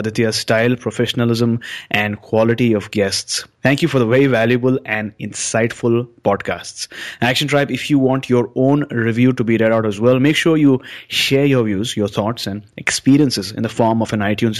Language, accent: English, Indian